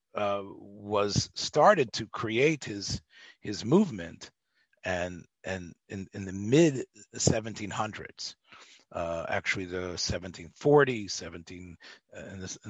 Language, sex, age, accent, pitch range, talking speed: English, male, 40-59, American, 100-150 Hz, 115 wpm